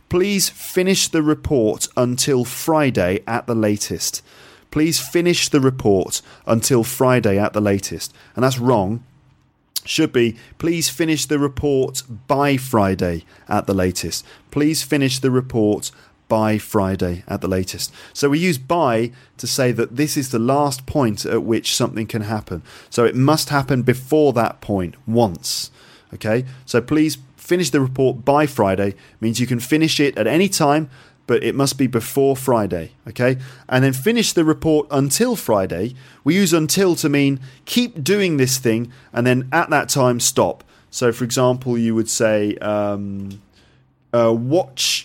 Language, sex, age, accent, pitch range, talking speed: English, male, 30-49, British, 110-145 Hz, 160 wpm